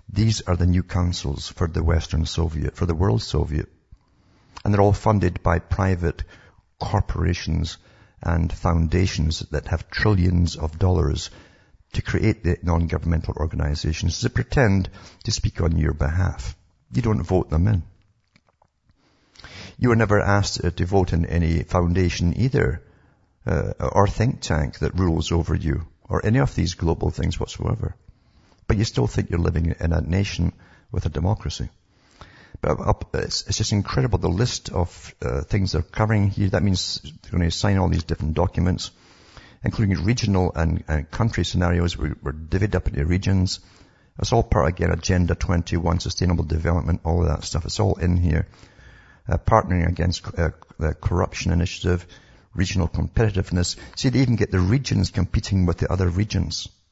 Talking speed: 160 wpm